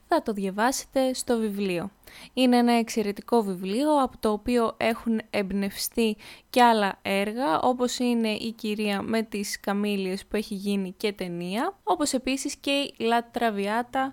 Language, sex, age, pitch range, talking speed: Greek, female, 20-39, 205-255 Hz, 150 wpm